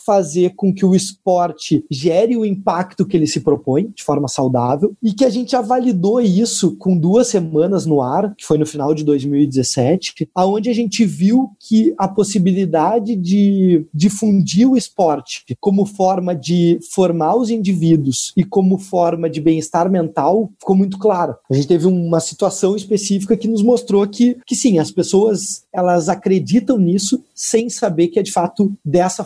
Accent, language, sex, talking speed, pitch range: Brazilian, Portuguese, male, 170 wpm, 170-210 Hz